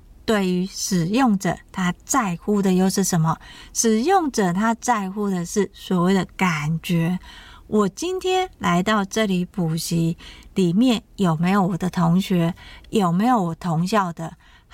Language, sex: Chinese, female